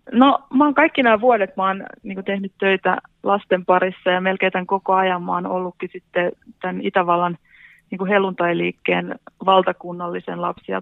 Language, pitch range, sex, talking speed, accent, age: Finnish, 180-200 Hz, female, 145 wpm, native, 30-49